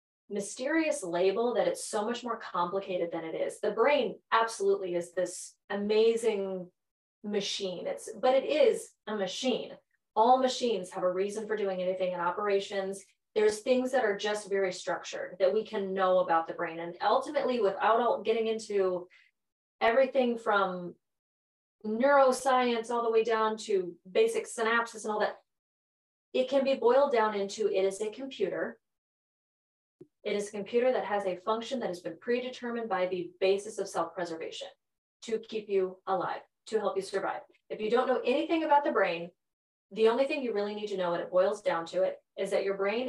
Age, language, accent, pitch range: 30-49, English, American, 190-255 Hz